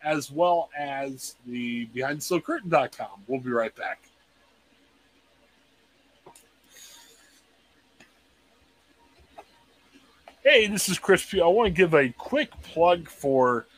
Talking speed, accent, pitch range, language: 100 wpm, American, 135-180 Hz, English